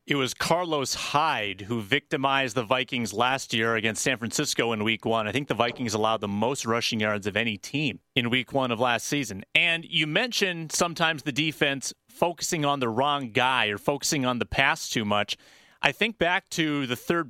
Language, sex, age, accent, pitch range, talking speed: English, male, 30-49, American, 115-145 Hz, 200 wpm